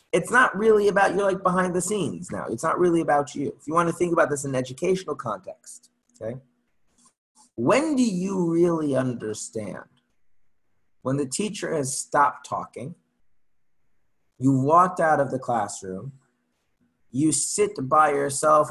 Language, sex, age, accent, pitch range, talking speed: English, male, 30-49, American, 120-160 Hz, 150 wpm